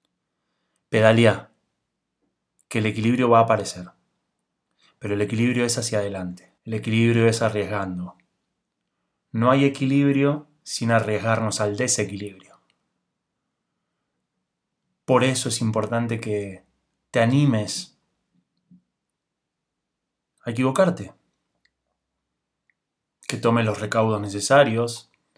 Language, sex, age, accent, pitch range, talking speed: Spanish, male, 30-49, Argentinian, 105-125 Hz, 90 wpm